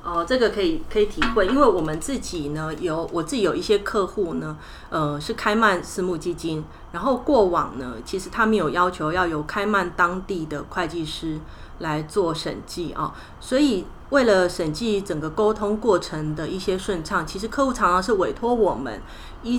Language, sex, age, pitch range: Chinese, female, 30-49, 165-215 Hz